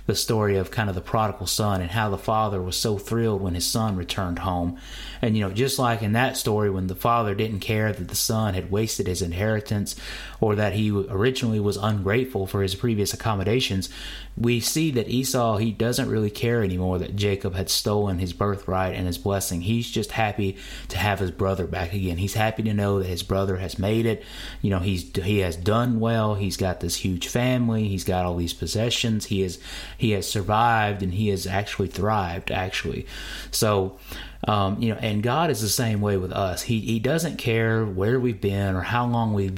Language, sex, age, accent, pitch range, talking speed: English, male, 30-49, American, 95-110 Hz, 210 wpm